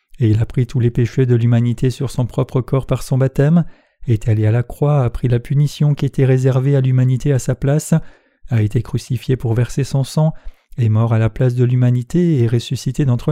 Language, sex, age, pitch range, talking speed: French, male, 40-59, 120-140 Hz, 225 wpm